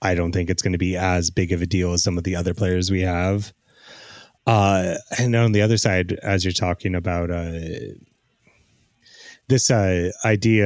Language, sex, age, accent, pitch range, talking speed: English, male, 30-49, American, 90-105 Hz, 190 wpm